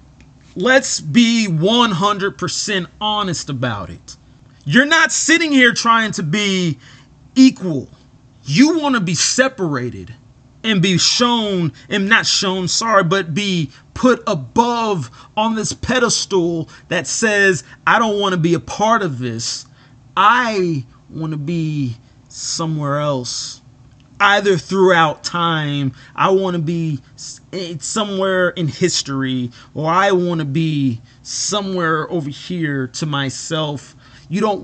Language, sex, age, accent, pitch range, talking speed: English, male, 30-49, American, 135-200 Hz, 120 wpm